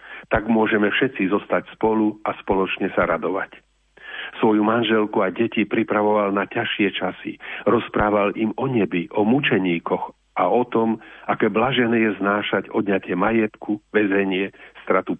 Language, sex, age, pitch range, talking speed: Slovak, male, 50-69, 105-120 Hz, 135 wpm